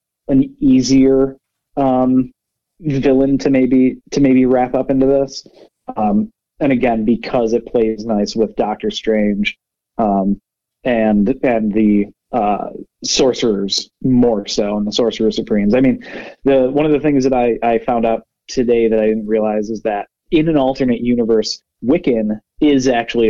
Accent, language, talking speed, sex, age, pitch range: American, English, 155 wpm, male, 30-49, 110-135 Hz